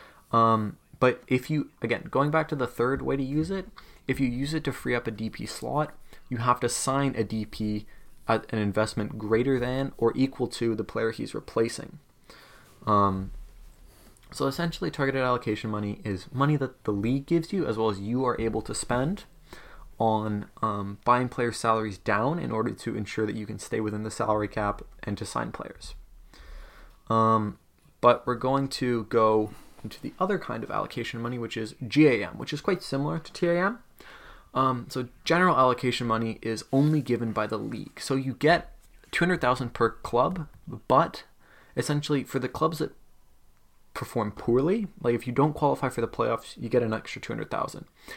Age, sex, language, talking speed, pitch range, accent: 20-39, male, English, 180 wpm, 110-140 Hz, American